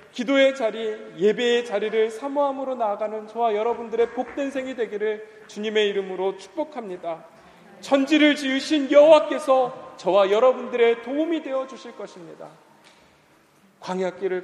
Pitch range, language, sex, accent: 195-265 Hz, Korean, male, native